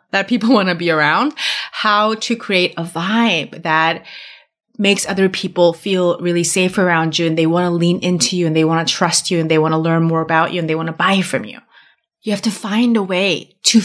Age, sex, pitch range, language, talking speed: 30-49, female, 175-230 Hz, English, 240 wpm